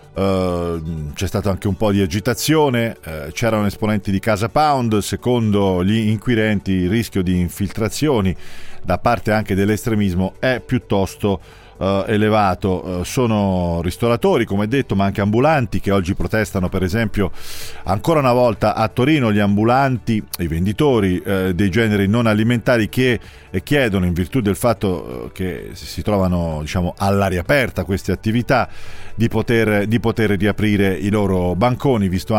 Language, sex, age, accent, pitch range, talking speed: Italian, male, 40-59, native, 95-115 Hz, 135 wpm